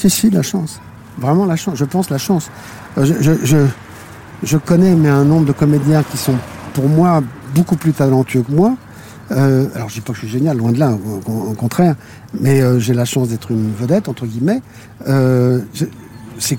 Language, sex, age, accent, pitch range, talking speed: French, male, 50-69, French, 120-165 Hz, 210 wpm